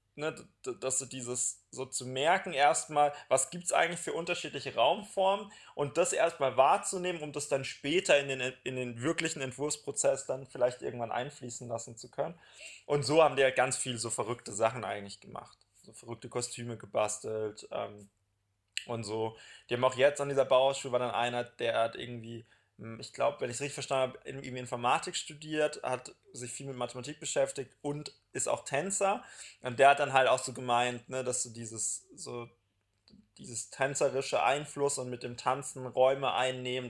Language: German